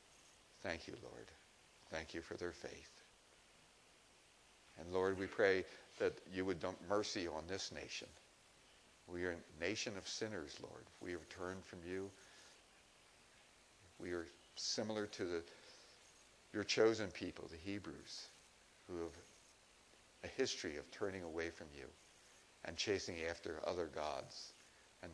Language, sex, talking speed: English, male, 135 wpm